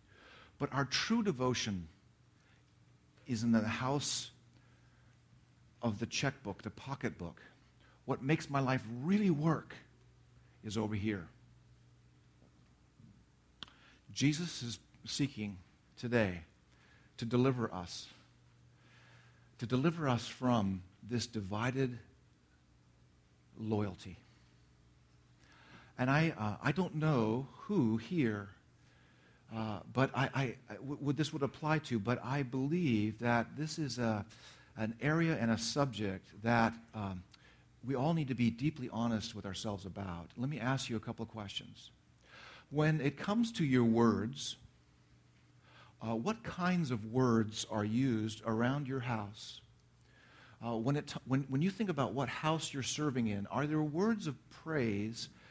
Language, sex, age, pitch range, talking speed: English, male, 50-69, 100-135 Hz, 130 wpm